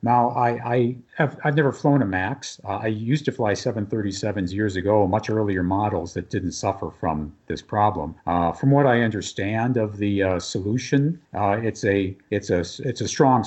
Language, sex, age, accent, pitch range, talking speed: English, male, 50-69, American, 100-120 Hz, 190 wpm